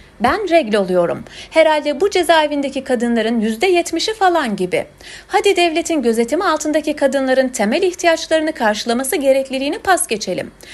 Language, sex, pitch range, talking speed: Turkish, female, 230-335 Hz, 115 wpm